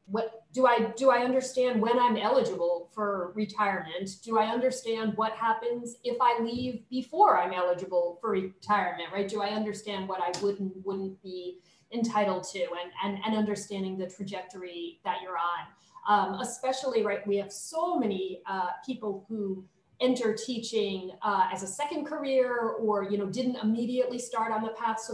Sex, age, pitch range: female, 40-59, 195-245 Hz